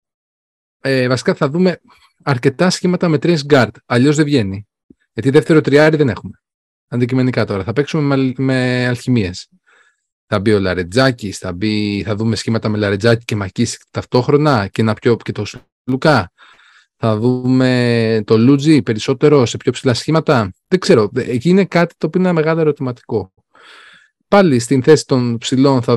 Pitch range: 115-150 Hz